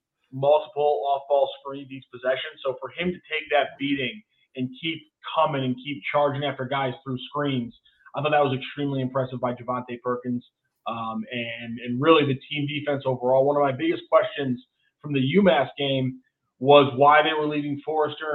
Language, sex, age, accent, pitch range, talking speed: English, male, 20-39, American, 130-155 Hz, 180 wpm